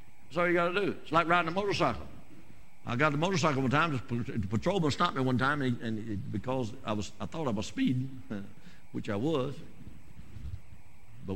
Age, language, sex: 60-79, English, male